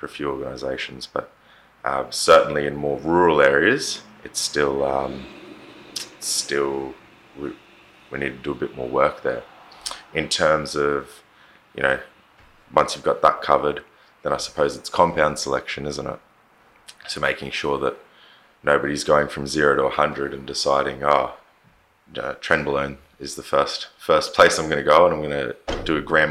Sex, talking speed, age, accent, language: male, 170 wpm, 20-39, Australian, English